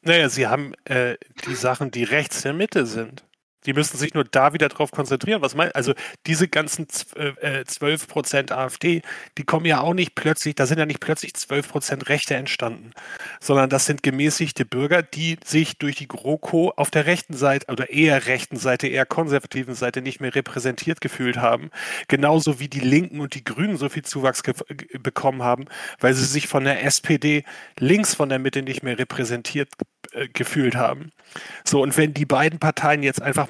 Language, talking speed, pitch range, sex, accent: German, 185 wpm, 130-155 Hz, male, German